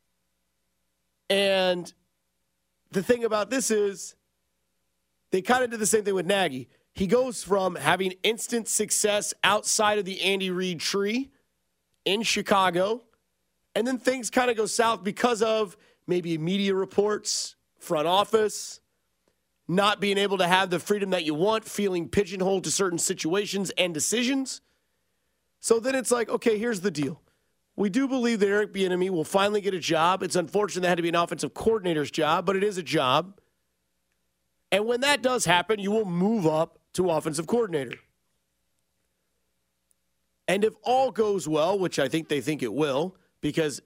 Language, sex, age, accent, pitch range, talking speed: English, male, 30-49, American, 145-205 Hz, 165 wpm